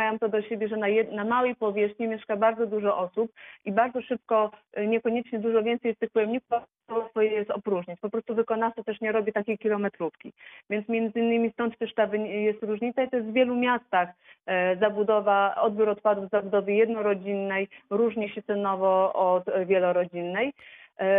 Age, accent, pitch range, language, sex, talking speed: 30-49, native, 200-225 Hz, Polish, female, 155 wpm